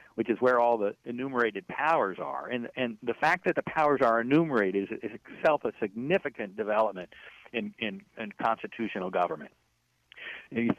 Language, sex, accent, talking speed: English, male, American, 160 wpm